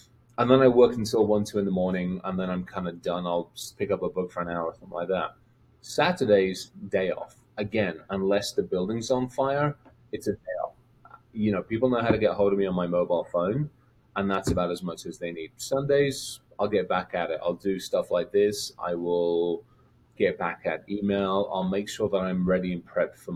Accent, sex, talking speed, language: British, male, 230 wpm, English